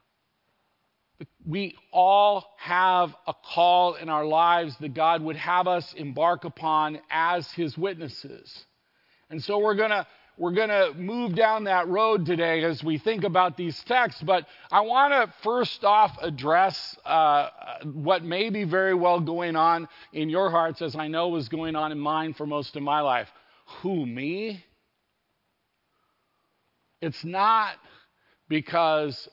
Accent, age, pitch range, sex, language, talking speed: American, 50-69, 145-185 Hz, male, English, 145 wpm